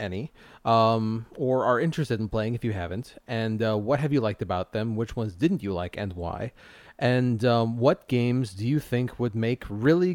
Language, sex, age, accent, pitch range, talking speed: English, male, 30-49, American, 110-140 Hz, 205 wpm